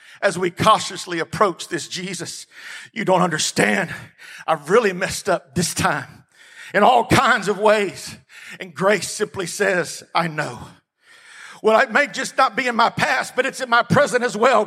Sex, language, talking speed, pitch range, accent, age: male, English, 170 wpm, 210-265 Hz, American, 50-69